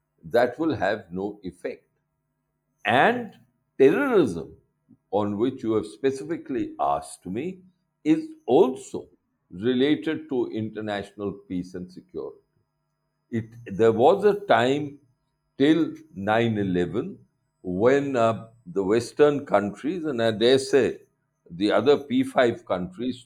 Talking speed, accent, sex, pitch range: 110 wpm, Indian, male, 105-150 Hz